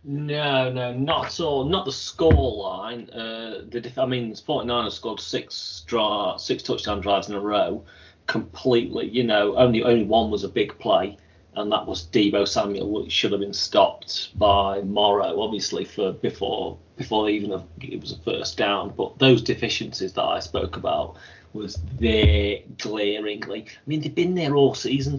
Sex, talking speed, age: male, 180 wpm, 30-49